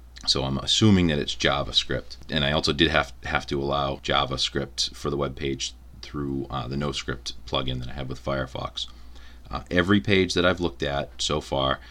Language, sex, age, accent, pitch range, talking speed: English, male, 30-49, American, 65-75 Hz, 190 wpm